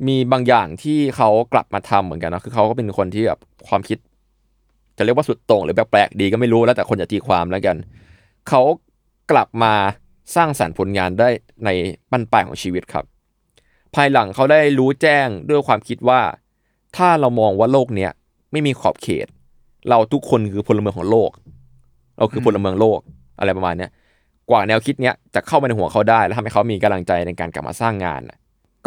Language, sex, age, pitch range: Thai, male, 20-39, 95-130 Hz